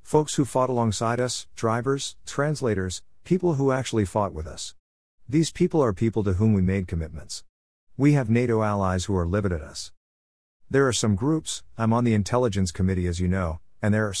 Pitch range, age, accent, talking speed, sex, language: 85-115 Hz, 50-69, American, 195 wpm, male, English